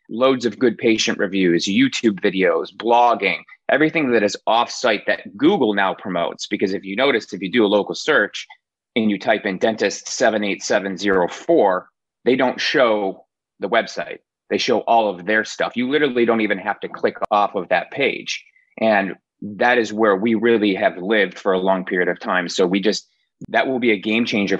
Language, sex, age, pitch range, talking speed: English, male, 30-49, 100-125 Hz, 190 wpm